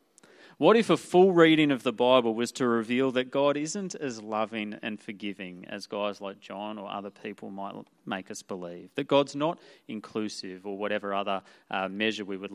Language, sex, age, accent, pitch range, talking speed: English, male, 30-49, Australian, 105-150 Hz, 185 wpm